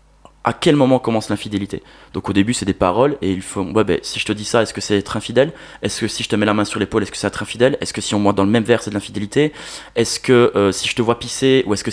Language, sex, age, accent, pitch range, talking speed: French, male, 20-39, French, 100-120 Hz, 325 wpm